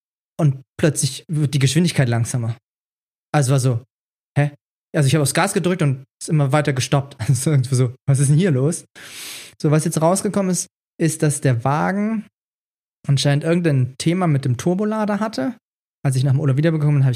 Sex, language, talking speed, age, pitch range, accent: male, German, 190 wpm, 20-39, 135-165 Hz, German